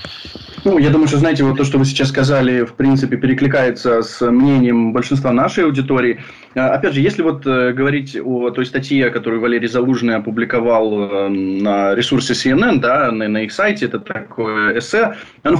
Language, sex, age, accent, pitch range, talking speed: Ukrainian, male, 20-39, native, 120-140 Hz, 175 wpm